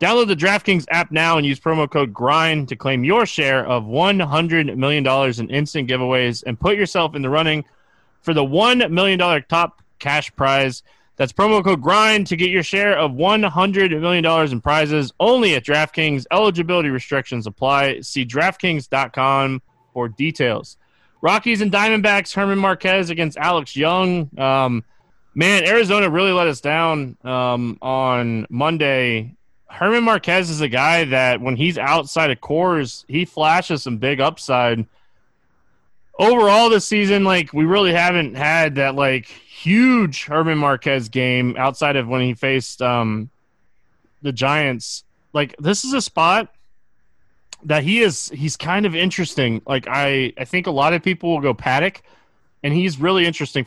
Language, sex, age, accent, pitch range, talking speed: English, male, 20-39, American, 130-180 Hz, 155 wpm